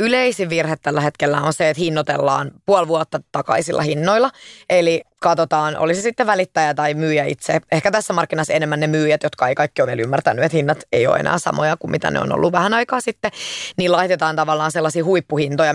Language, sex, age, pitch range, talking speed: English, female, 20-39, 150-175 Hz, 195 wpm